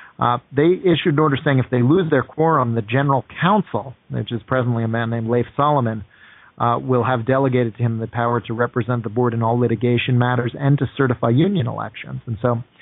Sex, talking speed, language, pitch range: male, 210 wpm, English, 115-135 Hz